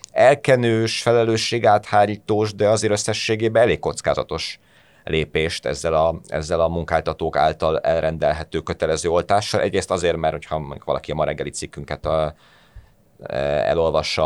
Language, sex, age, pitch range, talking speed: Hungarian, male, 30-49, 80-110 Hz, 120 wpm